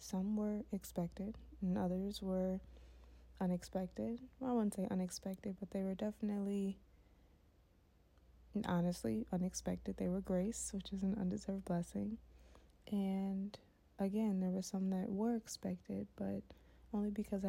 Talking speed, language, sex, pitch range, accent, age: 125 wpm, English, female, 180-200 Hz, American, 20-39